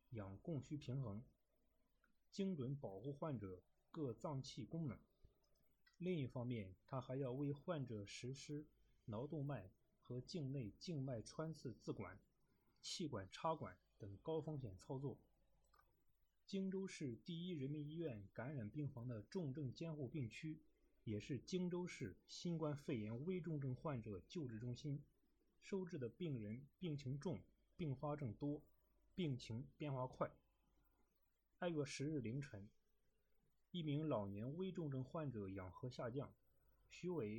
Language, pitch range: Chinese, 115-155 Hz